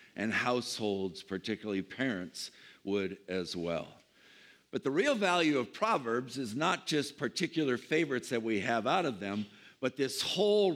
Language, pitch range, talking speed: English, 105-145 Hz, 150 wpm